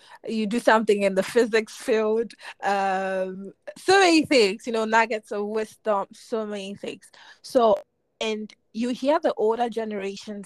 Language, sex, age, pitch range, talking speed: English, female, 20-39, 185-240 Hz, 150 wpm